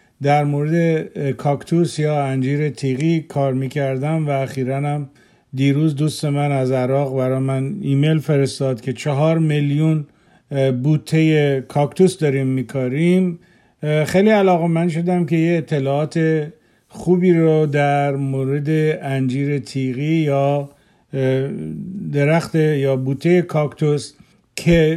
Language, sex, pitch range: Persian, male, 135-160 Hz